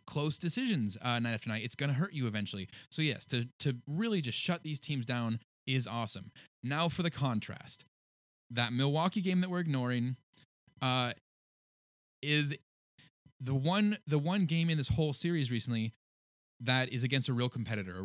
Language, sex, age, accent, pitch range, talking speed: English, male, 20-39, American, 115-155 Hz, 175 wpm